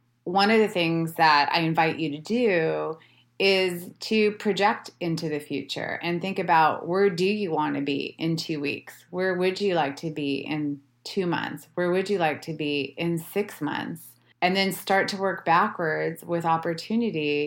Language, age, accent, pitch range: English, 30-49, American, 145-175 Hz